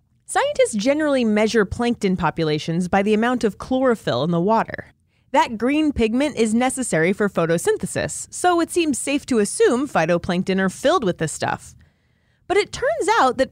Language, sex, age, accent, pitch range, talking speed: English, female, 30-49, American, 205-295 Hz, 165 wpm